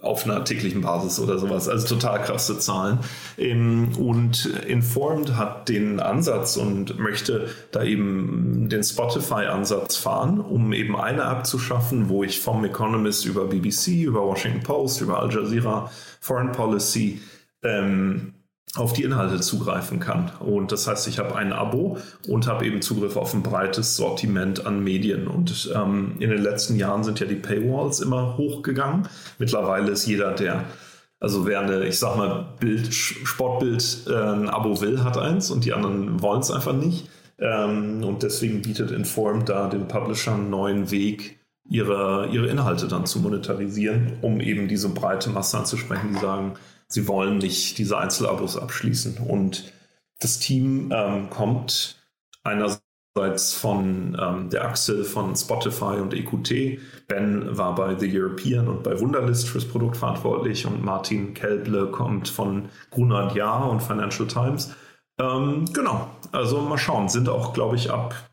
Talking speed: 155 wpm